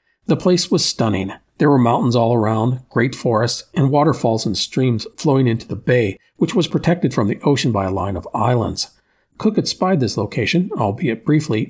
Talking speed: 190 wpm